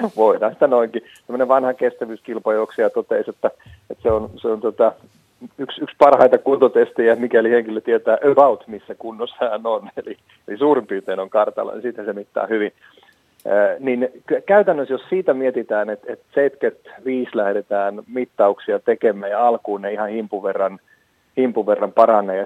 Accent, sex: native, male